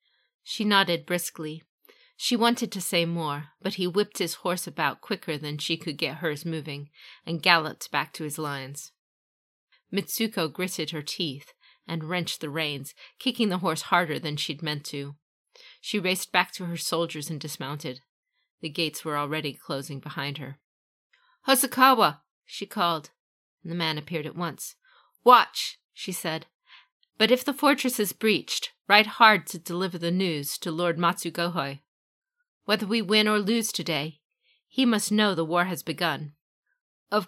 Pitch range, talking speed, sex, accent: 155-200 Hz, 160 wpm, female, American